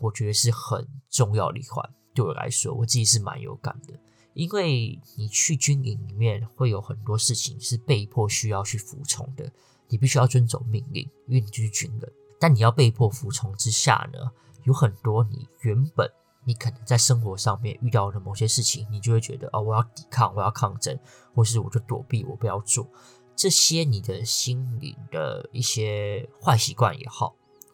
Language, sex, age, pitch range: Chinese, male, 20-39, 110-135 Hz